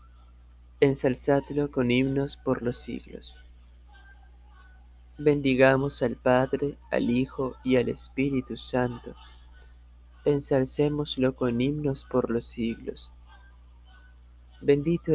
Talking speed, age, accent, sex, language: 85 wpm, 20-39, Argentinian, male, Spanish